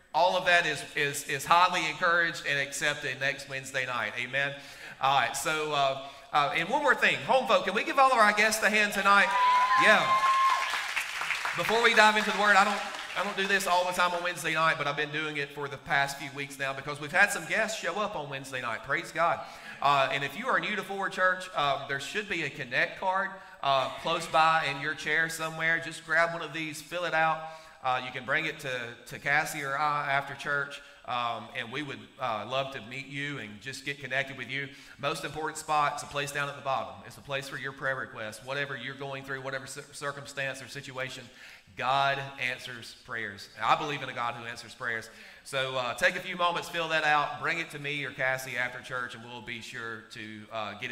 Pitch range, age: 135-175 Hz, 30-49